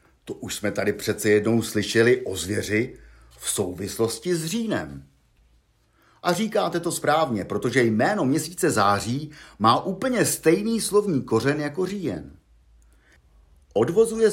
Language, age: Czech, 50-69